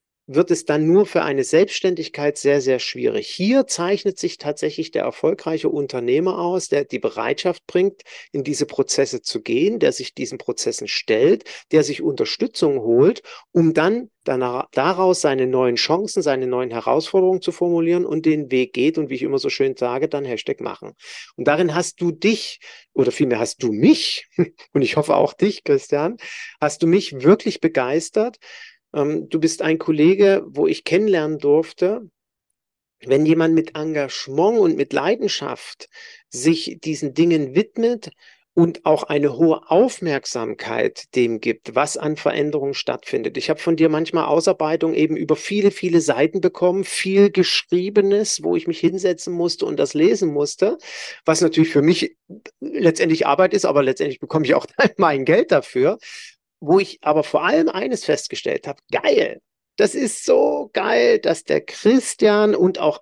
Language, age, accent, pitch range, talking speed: German, 50-69, German, 155-230 Hz, 160 wpm